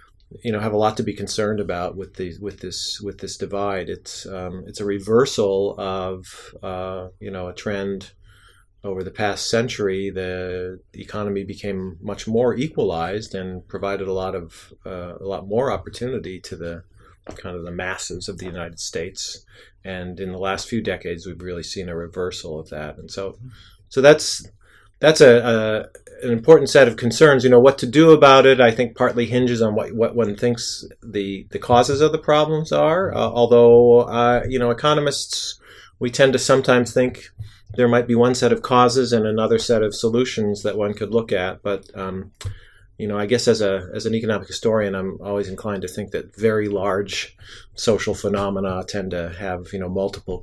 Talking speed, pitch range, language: 190 wpm, 95-115 Hz, English